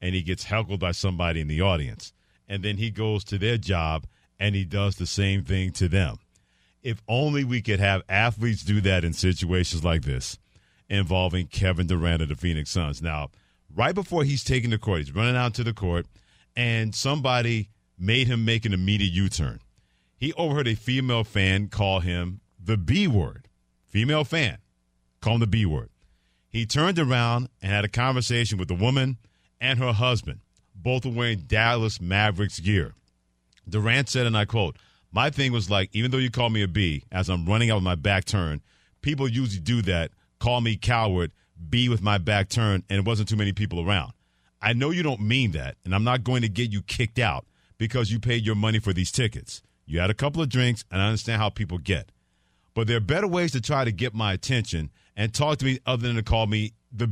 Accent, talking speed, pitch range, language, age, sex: American, 205 wpm, 90-120 Hz, English, 50-69, male